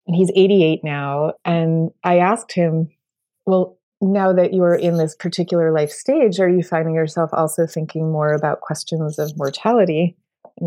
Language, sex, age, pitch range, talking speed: English, female, 30-49, 150-180 Hz, 170 wpm